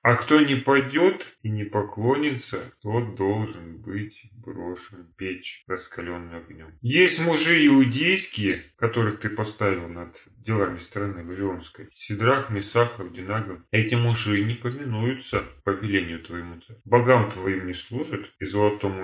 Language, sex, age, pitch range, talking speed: Russian, male, 30-49, 100-125 Hz, 130 wpm